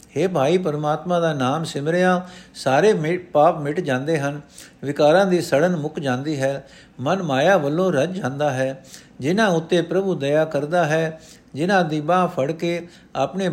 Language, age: Punjabi, 60-79